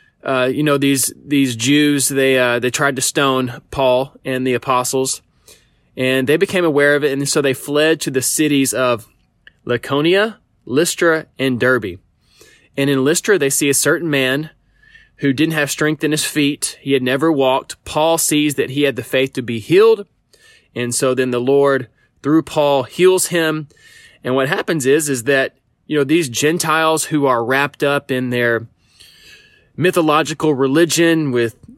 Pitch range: 130-155 Hz